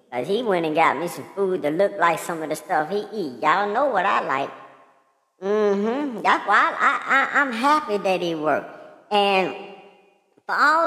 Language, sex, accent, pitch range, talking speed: English, male, American, 195-255 Hz, 200 wpm